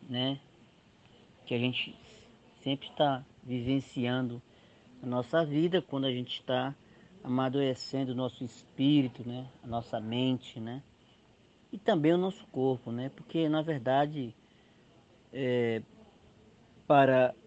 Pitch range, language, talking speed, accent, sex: 120-155 Hz, Portuguese, 110 wpm, Brazilian, male